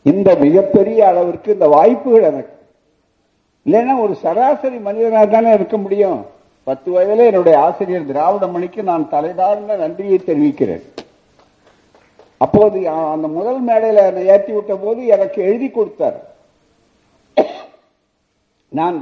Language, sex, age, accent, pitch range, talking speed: Tamil, male, 50-69, native, 175-230 Hz, 105 wpm